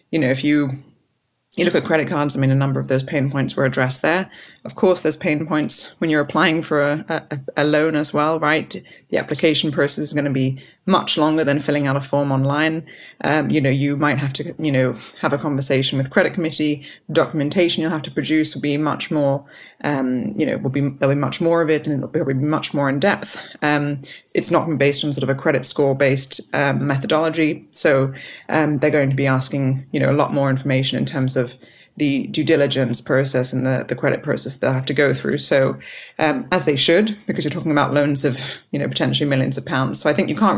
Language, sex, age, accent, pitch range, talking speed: English, female, 20-39, British, 135-155 Hz, 230 wpm